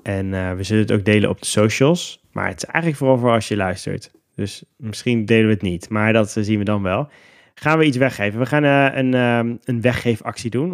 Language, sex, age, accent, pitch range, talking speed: Dutch, male, 20-39, Dutch, 105-140 Hz, 245 wpm